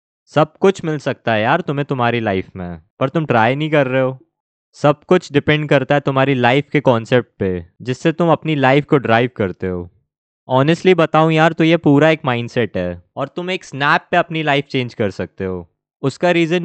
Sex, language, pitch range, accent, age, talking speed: male, Hindi, 115-165 Hz, native, 20-39, 200 wpm